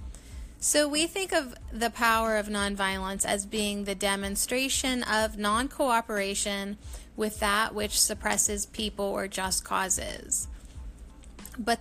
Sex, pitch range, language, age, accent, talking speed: female, 195-230 Hz, English, 30-49, American, 120 wpm